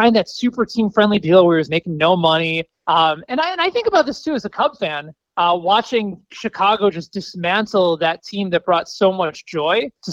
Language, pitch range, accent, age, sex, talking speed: English, 165-220 Hz, American, 20-39, male, 215 wpm